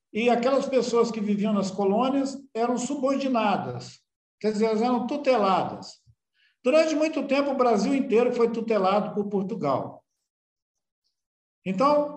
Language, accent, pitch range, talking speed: Portuguese, Brazilian, 200-270 Hz, 120 wpm